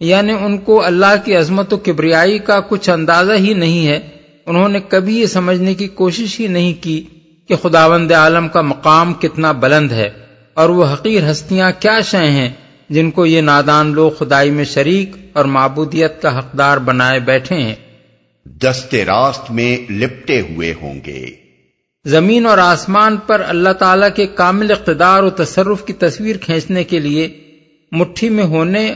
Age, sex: 50-69, male